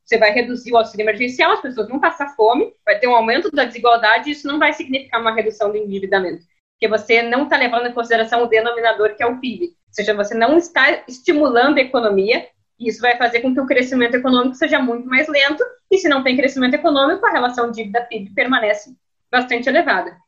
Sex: female